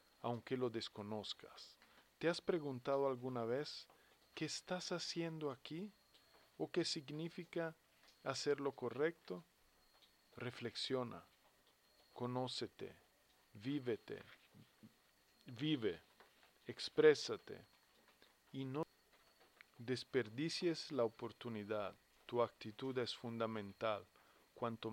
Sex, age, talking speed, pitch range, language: male, 40-59, 80 wpm, 110-140 Hz, Spanish